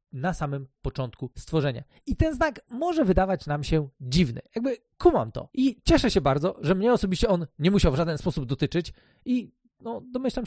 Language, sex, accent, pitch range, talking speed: Polish, male, native, 140-210 Hz, 180 wpm